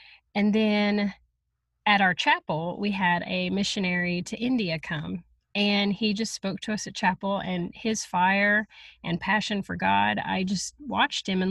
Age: 30-49